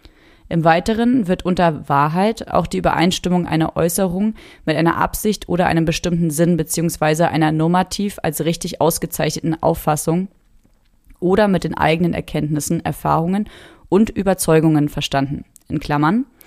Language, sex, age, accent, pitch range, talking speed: German, female, 30-49, German, 155-185 Hz, 130 wpm